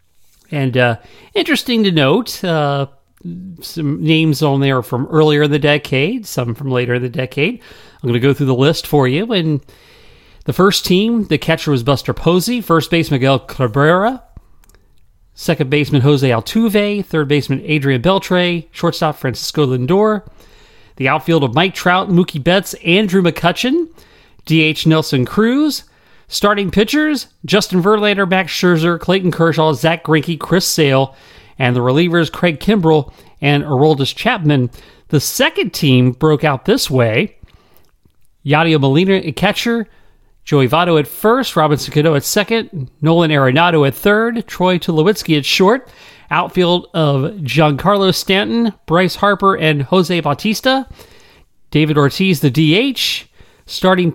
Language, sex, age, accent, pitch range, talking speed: English, male, 40-59, American, 145-190 Hz, 140 wpm